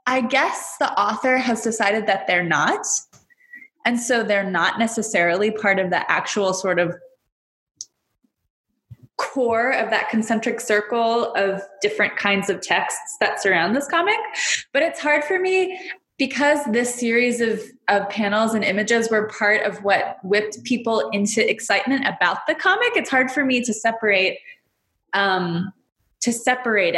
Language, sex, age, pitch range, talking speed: English, female, 20-39, 195-245 Hz, 145 wpm